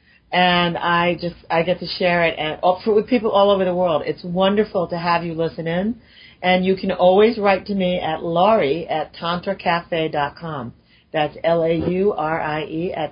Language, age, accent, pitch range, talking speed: English, 40-59, American, 165-190 Hz, 200 wpm